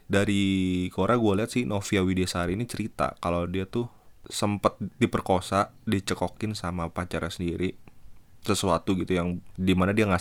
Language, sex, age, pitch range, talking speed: Indonesian, male, 20-39, 90-105 Hz, 140 wpm